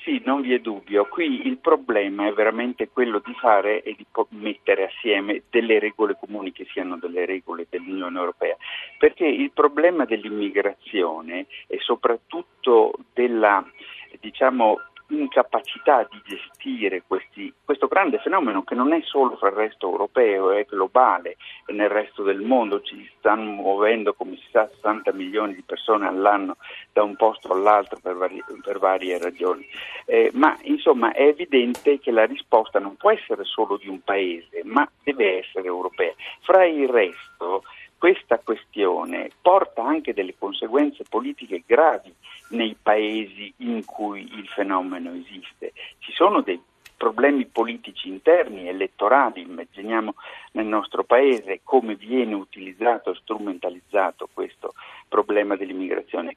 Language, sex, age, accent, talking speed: Italian, male, 50-69, native, 140 wpm